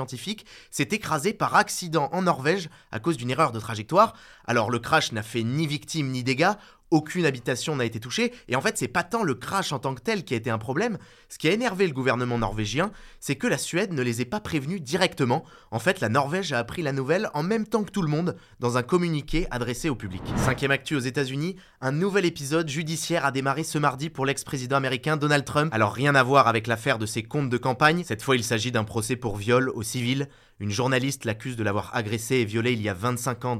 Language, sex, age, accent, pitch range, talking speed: French, male, 20-39, French, 115-155 Hz, 240 wpm